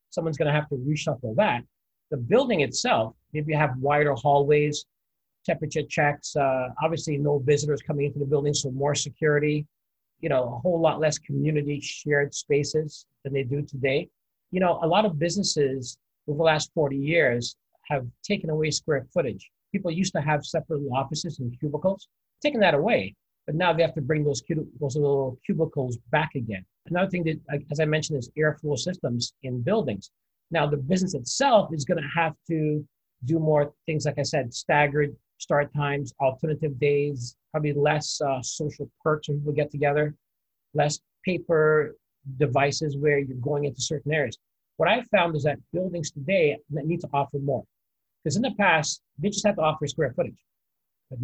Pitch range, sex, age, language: 140-160 Hz, male, 50-69, English